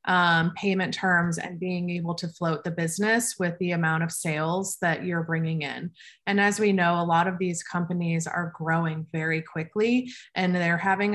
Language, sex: English, female